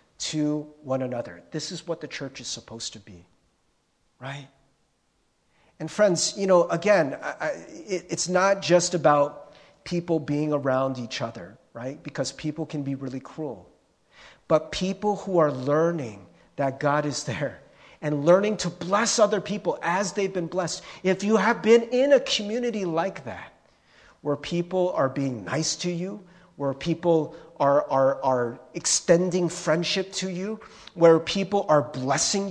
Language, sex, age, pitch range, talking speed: English, male, 40-59, 145-195 Hz, 150 wpm